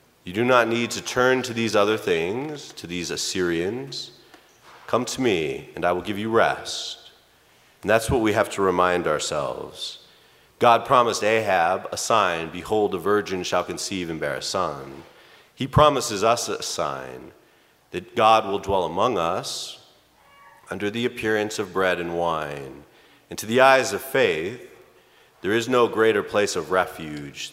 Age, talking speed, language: 30-49, 165 wpm, English